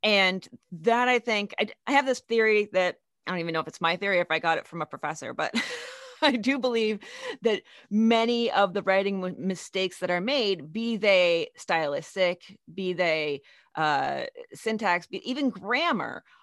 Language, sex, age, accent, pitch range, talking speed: English, female, 30-49, American, 185-255 Hz, 175 wpm